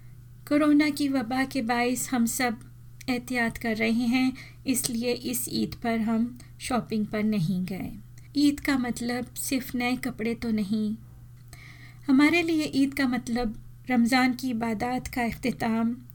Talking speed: 140 wpm